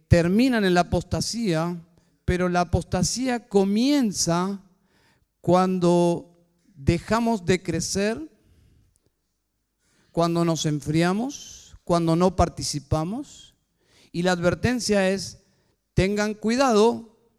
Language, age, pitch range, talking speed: Spanish, 50-69, 160-205 Hz, 85 wpm